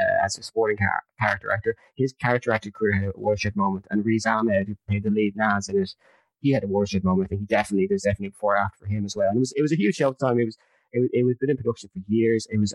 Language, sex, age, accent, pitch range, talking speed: English, male, 20-39, British, 100-125 Hz, 315 wpm